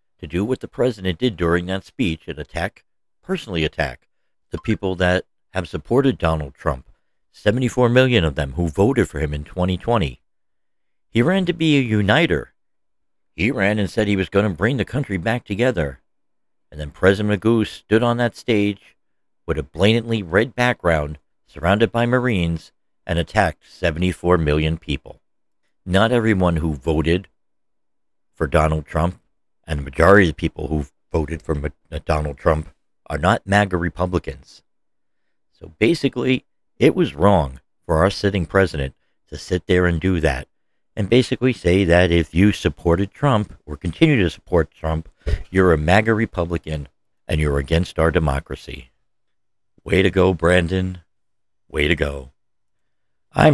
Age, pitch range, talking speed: 60-79, 80-105 Hz, 155 wpm